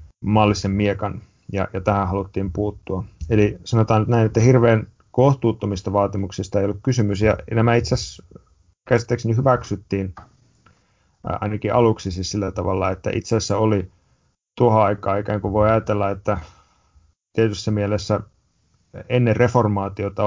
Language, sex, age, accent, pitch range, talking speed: Finnish, male, 30-49, native, 95-110 Hz, 125 wpm